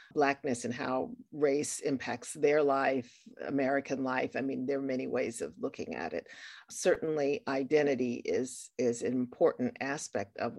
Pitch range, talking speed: 140-190 Hz, 155 wpm